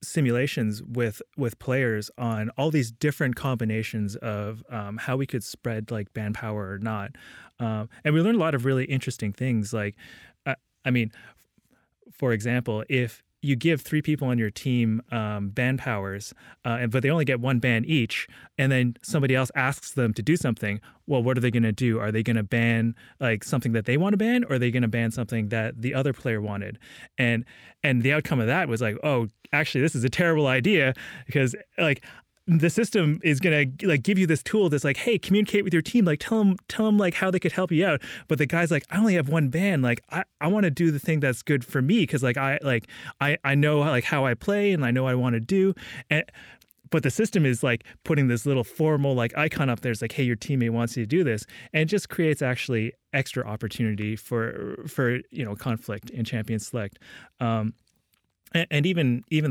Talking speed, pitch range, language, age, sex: 225 wpm, 115-150 Hz, English, 30-49, male